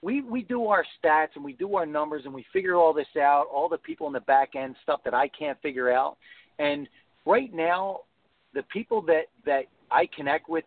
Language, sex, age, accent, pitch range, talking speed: English, male, 40-59, American, 140-180 Hz, 220 wpm